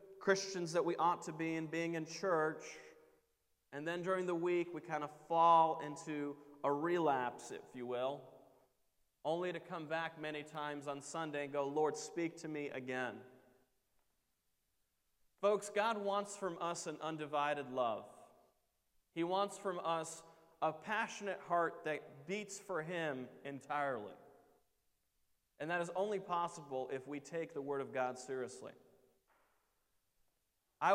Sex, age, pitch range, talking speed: male, 30-49, 135-180 Hz, 145 wpm